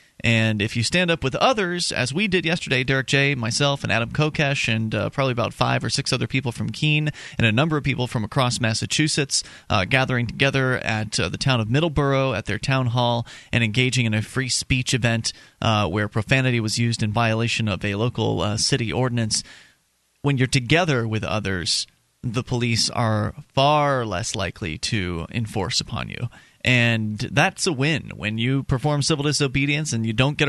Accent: American